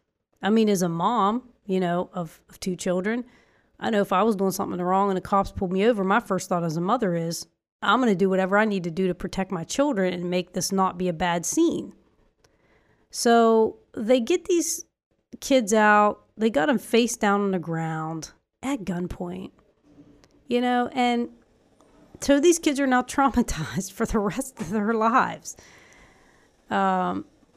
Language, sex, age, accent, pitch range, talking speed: English, female, 30-49, American, 185-240 Hz, 185 wpm